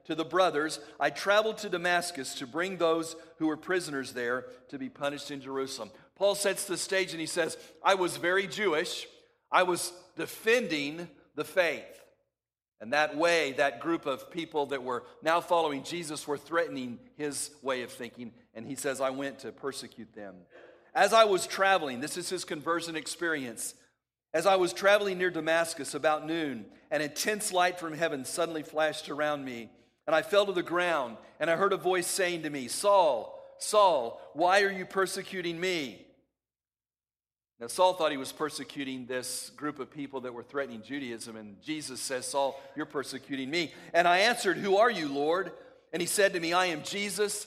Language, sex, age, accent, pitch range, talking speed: English, male, 50-69, American, 140-180 Hz, 180 wpm